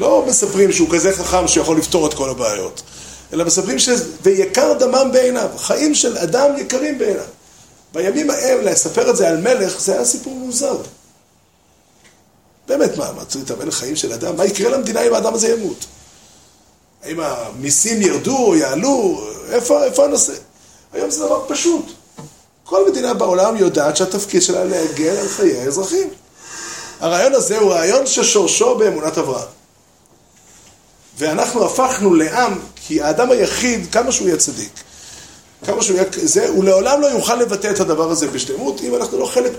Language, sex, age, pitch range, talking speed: Hebrew, male, 30-49, 180-275 Hz, 150 wpm